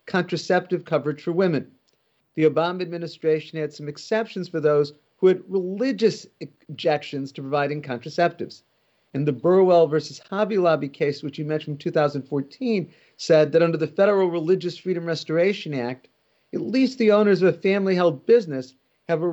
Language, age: English, 50-69